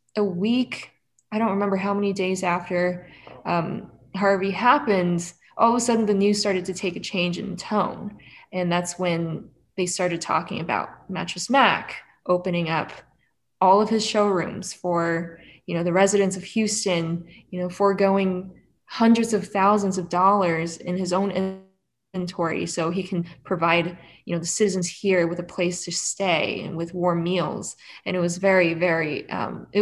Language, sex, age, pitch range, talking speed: English, female, 20-39, 175-200 Hz, 170 wpm